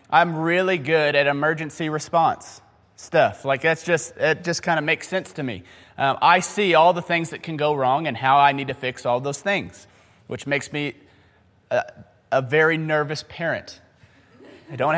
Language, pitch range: English, 140-185 Hz